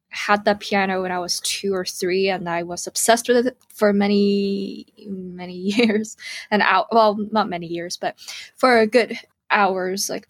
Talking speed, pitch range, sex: 175 wpm, 185-215 Hz, female